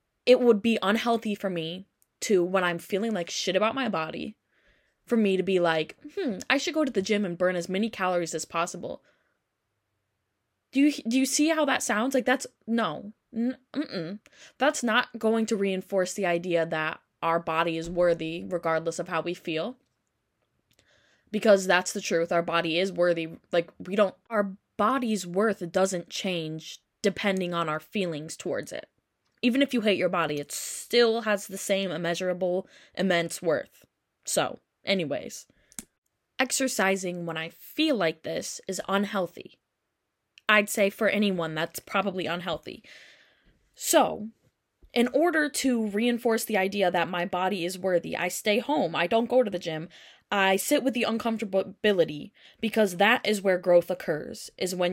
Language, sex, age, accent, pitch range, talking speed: English, female, 10-29, American, 175-225 Hz, 165 wpm